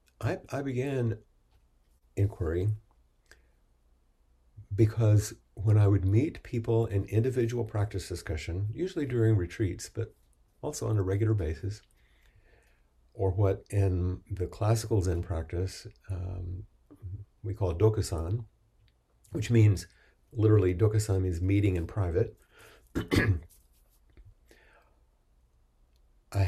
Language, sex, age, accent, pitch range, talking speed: English, male, 50-69, American, 85-110 Hz, 95 wpm